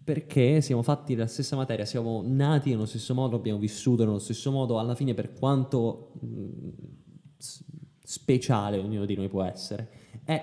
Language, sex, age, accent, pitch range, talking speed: English, male, 10-29, Italian, 110-140 Hz, 155 wpm